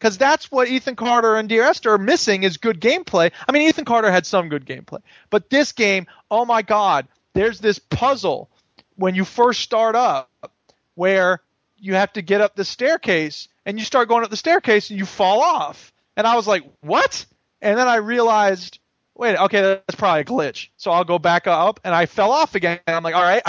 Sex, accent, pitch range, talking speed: male, American, 175-235 Hz, 215 wpm